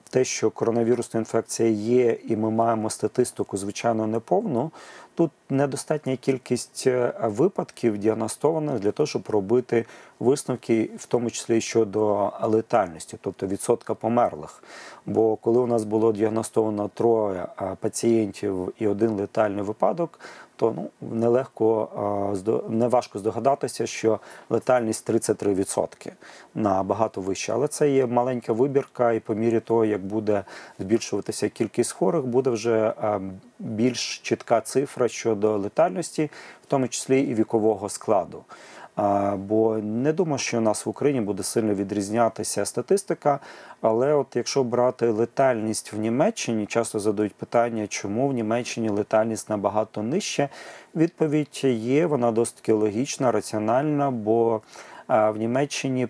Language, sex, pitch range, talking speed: Ukrainian, male, 110-125 Hz, 120 wpm